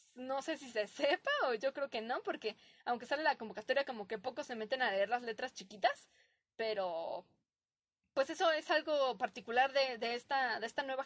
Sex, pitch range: female, 225-285 Hz